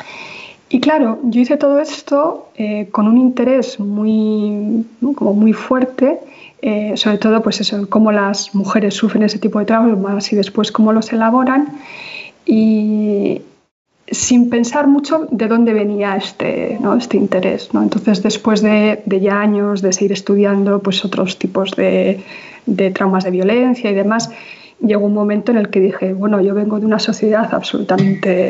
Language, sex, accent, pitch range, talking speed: Spanish, female, Spanish, 205-230 Hz, 165 wpm